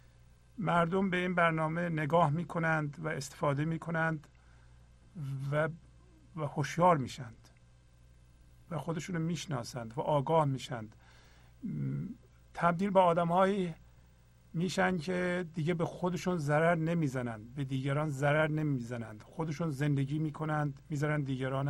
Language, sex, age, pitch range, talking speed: Persian, male, 50-69, 105-165 Hz, 110 wpm